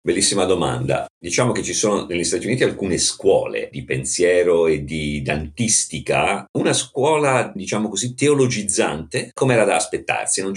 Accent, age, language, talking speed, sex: native, 50-69, Italian, 155 wpm, male